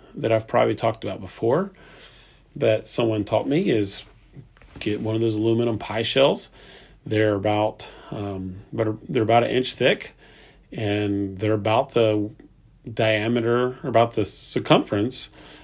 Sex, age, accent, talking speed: male, 40-59, American, 140 wpm